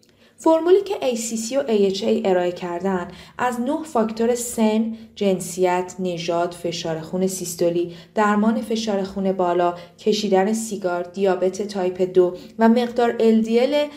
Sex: female